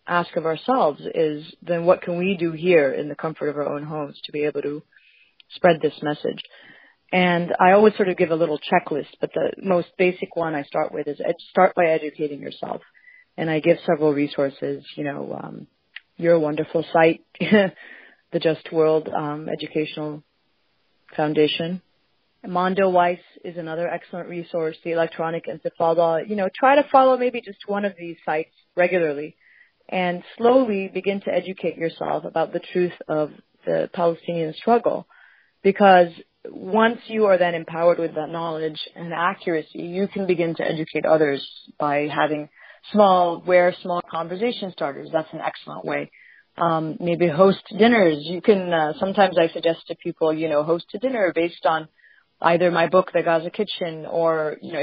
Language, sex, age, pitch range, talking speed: English, female, 30-49, 155-185 Hz, 170 wpm